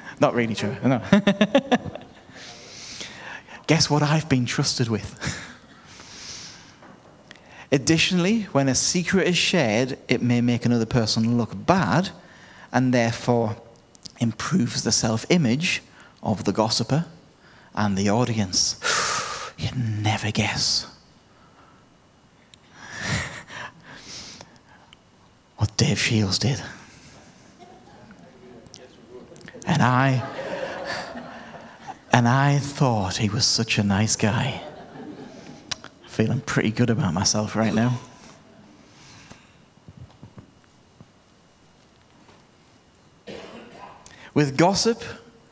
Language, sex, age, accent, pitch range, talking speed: English, male, 30-49, British, 110-135 Hz, 80 wpm